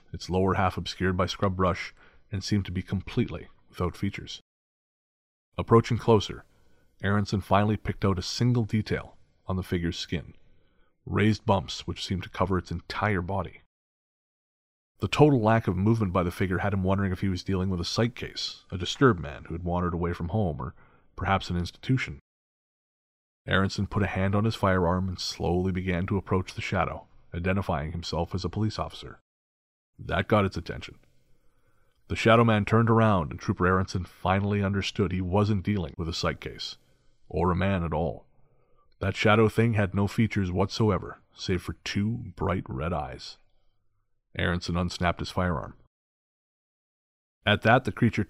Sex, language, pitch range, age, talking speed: male, English, 90-105 Hz, 30-49, 170 wpm